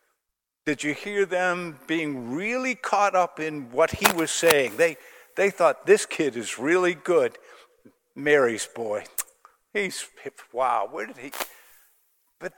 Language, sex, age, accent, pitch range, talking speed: English, male, 50-69, American, 130-180 Hz, 140 wpm